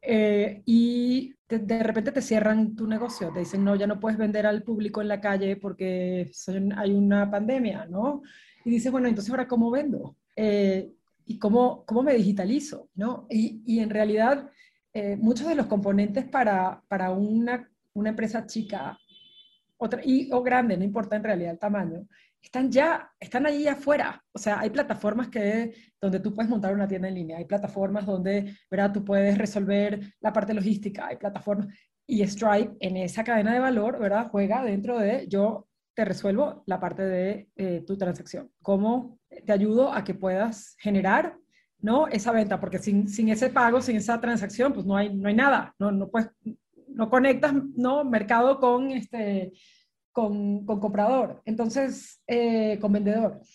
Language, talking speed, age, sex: Spanish, 175 wpm, 30-49, female